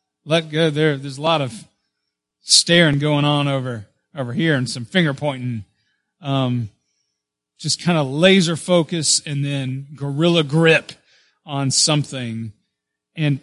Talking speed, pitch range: 135 wpm, 125-170 Hz